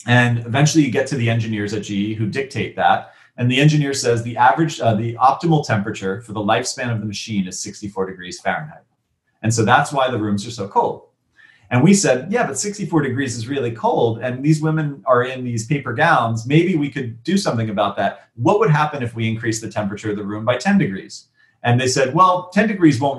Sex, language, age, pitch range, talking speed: male, English, 30-49, 110-145 Hz, 225 wpm